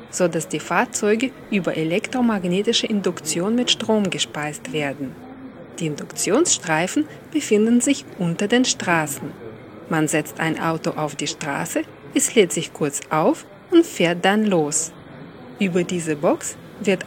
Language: German